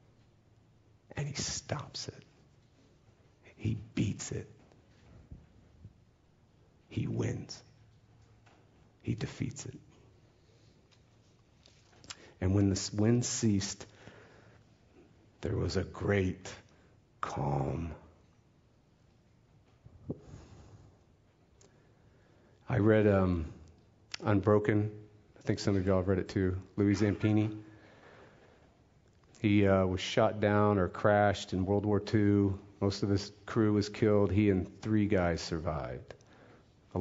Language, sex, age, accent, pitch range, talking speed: English, male, 50-69, American, 95-115 Hz, 100 wpm